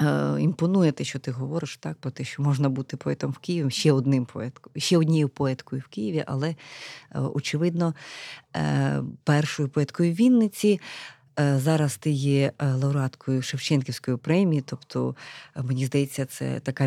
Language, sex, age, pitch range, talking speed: Ukrainian, female, 30-49, 130-150 Hz, 140 wpm